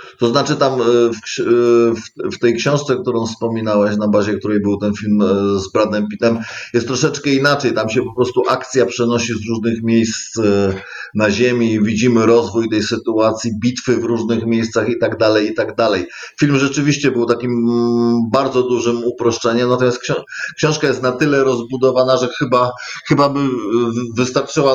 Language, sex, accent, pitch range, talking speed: Polish, male, native, 115-145 Hz, 155 wpm